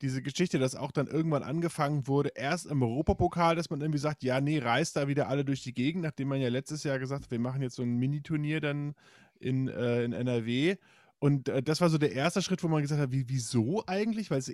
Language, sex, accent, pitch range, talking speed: German, male, German, 120-155 Hz, 245 wpm